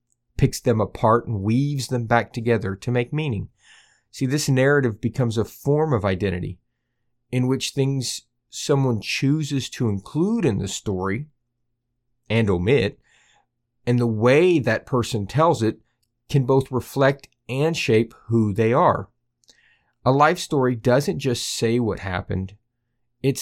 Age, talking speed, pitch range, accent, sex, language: 40-59, 140 wpm, 115-135 Hz, American, male, English